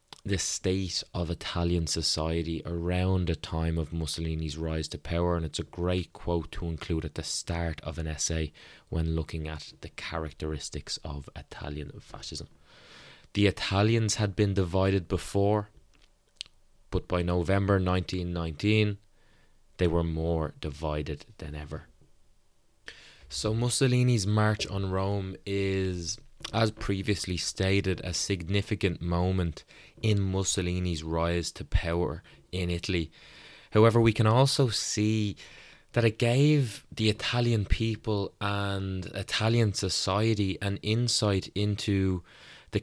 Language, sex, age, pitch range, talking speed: English, male, 20-39, 85-105 Hz, 120 wpm